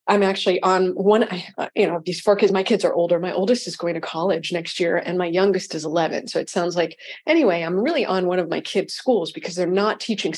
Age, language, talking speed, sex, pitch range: 40-59, English, 250 wpm, female, 180-225 Hz